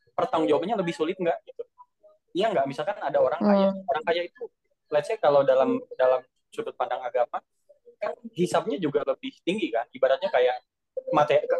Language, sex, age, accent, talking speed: Indonesian, male, 10-29, native, 150 wpm